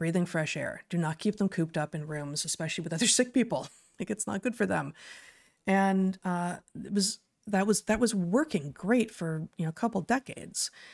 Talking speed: 210 wpm